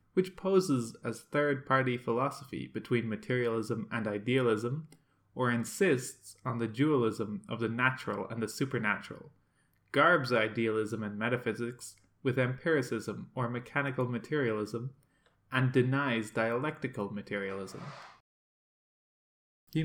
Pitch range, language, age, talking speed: 115-145 Hz, English, 20-39, 105 wpm